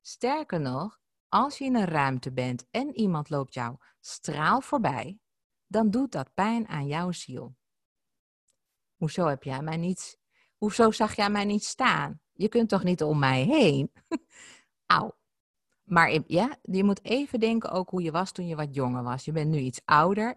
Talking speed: 165 wpm